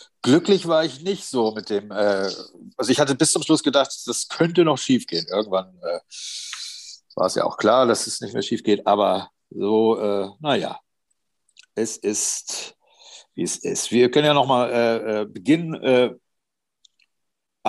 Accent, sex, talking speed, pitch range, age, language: German, male, 165 wpm, 100-130 Hz, 50-69, German